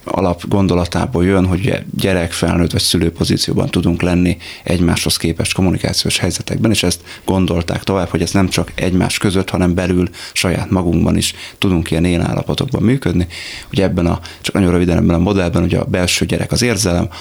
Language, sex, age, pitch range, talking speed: Hungarian, male, 30-49, 85-100 Hz, 165 wpm